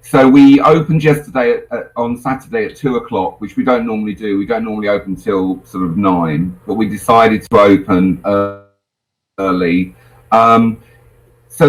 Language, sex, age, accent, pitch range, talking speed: English, male, 40-59, British, 100-135 Hz, 170 wpm